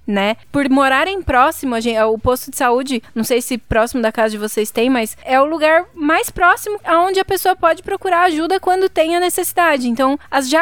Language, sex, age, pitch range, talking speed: Portuguese, female, 20-39, 245-335 Hz, 200 wpm